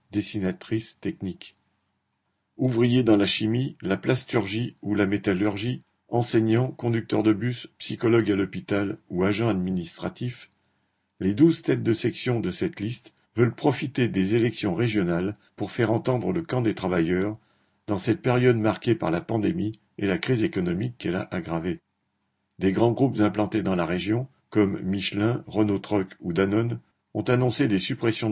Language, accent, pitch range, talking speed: French, French, 100-120 Hz, 150 wpm